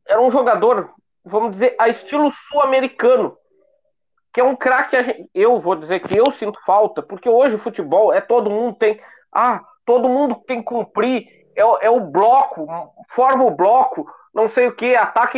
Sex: male